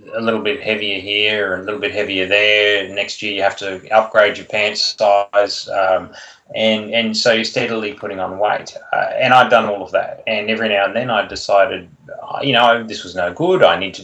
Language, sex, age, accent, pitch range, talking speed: English, male, 20-39, Australian, 100-115 Hz, 220 wpm